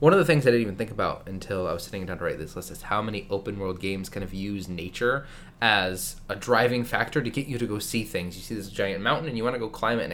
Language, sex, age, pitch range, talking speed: English, male, 20-39, 95-120 Hz, 310 wpm